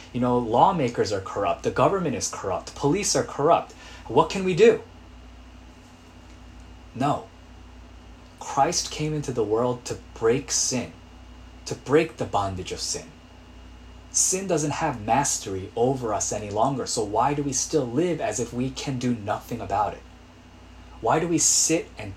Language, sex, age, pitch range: Korean, male, 20-39, 85-130 Hz